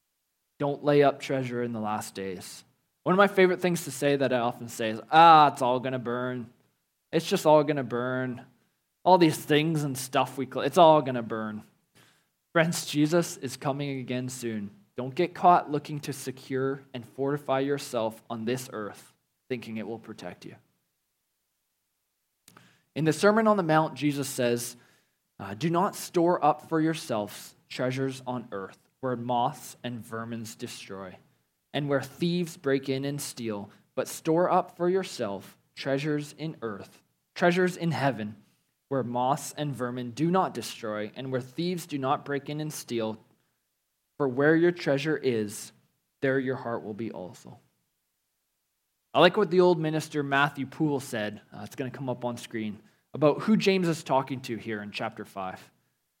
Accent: American